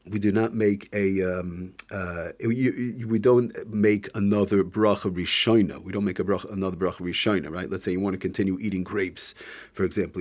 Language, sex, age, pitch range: English, male, 40-59, 95-105 Hz